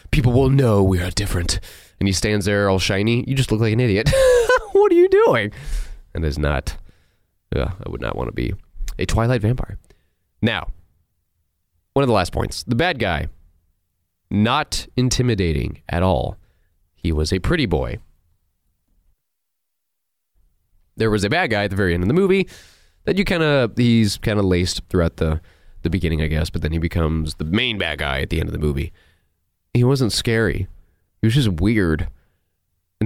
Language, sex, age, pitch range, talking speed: English, male, 30-49, 85-110 Hz, 185 wpm